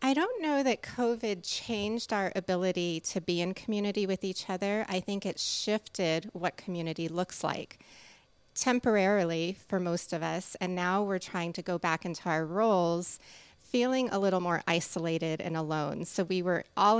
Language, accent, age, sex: English, American, 30-49, female